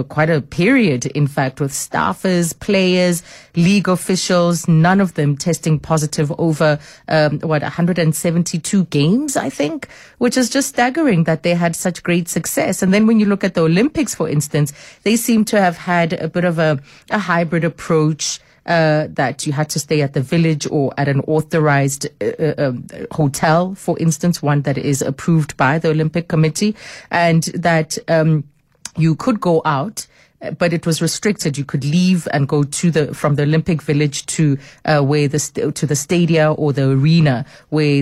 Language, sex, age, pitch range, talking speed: English, female, 30-49, 150-180 Hz, 175 wpm